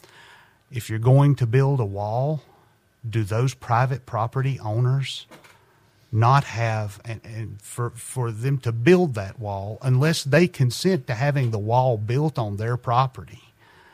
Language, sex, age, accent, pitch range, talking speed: English, male, 40-59, American, 110-130 Hz, 150 wpm